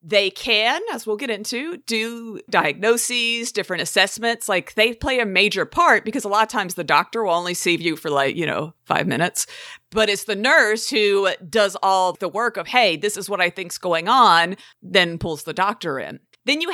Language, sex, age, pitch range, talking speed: English, female, 50-69, 180-235 Hz, 210 wpm